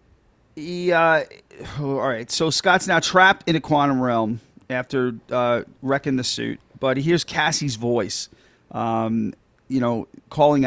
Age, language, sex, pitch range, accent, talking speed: 40-59, English, male, 120-140 Hz, American, 150 wpm